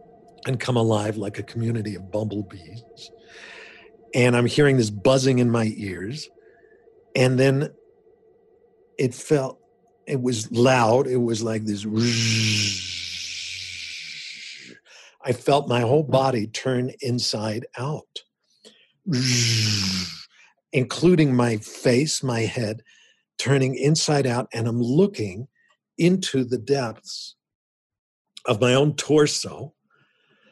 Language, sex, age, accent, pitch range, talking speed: English, male, 50-69, American, 110-140 Hz, 105 wpm